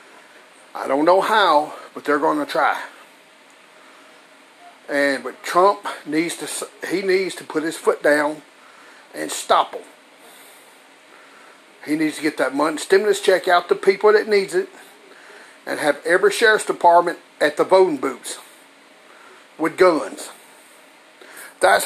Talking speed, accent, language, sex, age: 135 wpm, American, English, male, 50-69